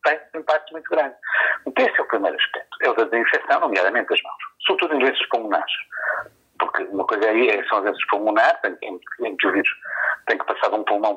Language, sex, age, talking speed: Portuguese, male, 50-69, 215 wpm